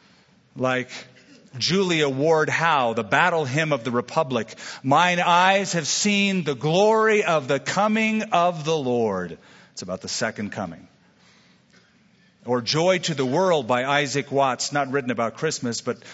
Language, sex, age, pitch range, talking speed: English, male, 50-69, 135-185 Hz, 150 wpm